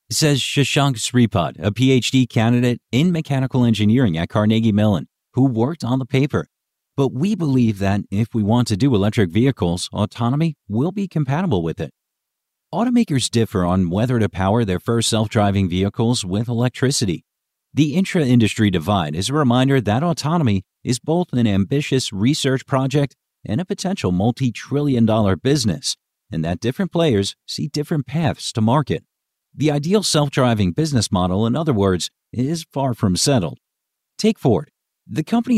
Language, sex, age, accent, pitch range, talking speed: English, male, 50-69, American, 105-140 Hz, 160 wpm